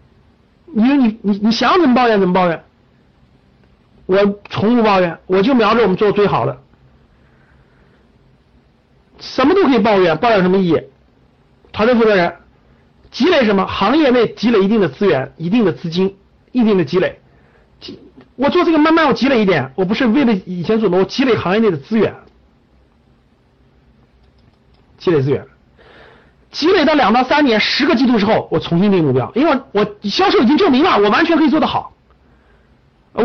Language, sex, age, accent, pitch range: Chinese, male, 50-69, native, 185-255 Hz